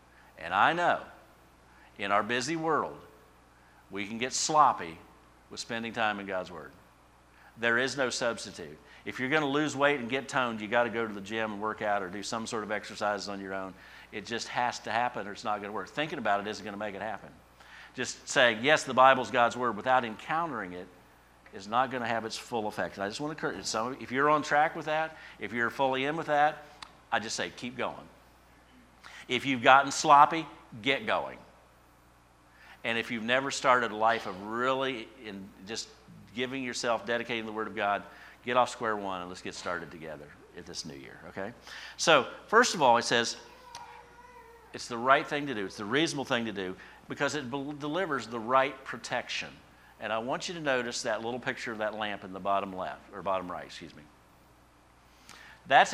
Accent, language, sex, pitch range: American, English, male, 100-135 Hz